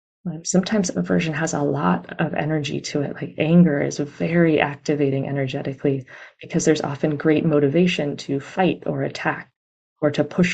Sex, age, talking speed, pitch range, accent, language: female, 30-49, 155 wpm, 140-175 Hz, American, English